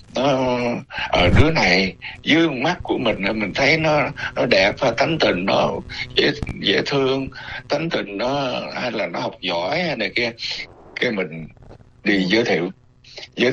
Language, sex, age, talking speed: Vietnamese, male, 60-79, 165 wpm